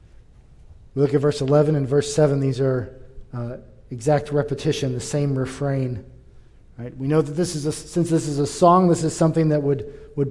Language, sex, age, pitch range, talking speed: English, male, 40-59, 130-165 Hz, 200 wpm